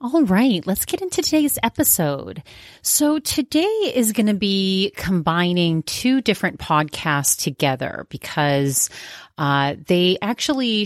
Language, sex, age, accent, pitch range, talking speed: English, female, 30-49, American, 150-195 Hz, 120 wpm